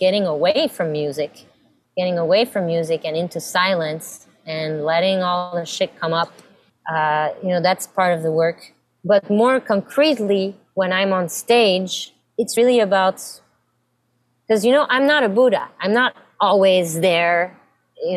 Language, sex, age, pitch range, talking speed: English, female, 20-39, 180-220 Hz, 160 wpm